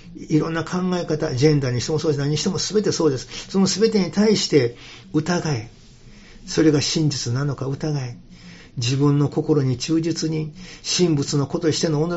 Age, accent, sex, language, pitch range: 50-69, native, male, Japanese, 125-165 Hz